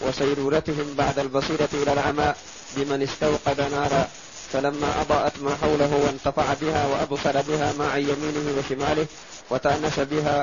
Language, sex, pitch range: Arabic, male, 140-150 Hz